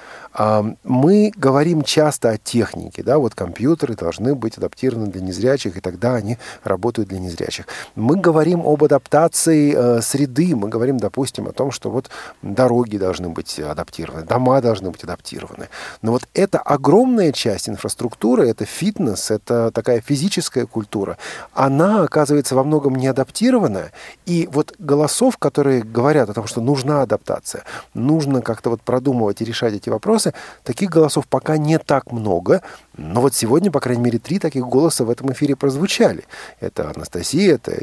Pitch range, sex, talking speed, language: 110-145 Hz, male, 155 wpm, Russian